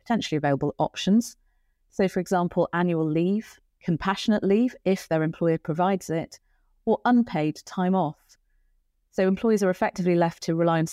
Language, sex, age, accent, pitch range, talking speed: English, female, 40-59, British, 160-185 Hz, 150 wpm